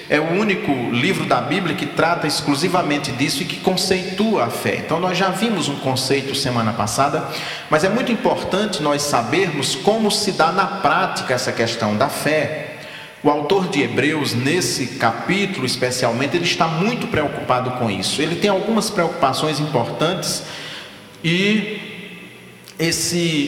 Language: Portuguese